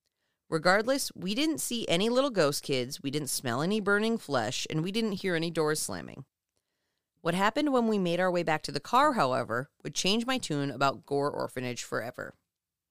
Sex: female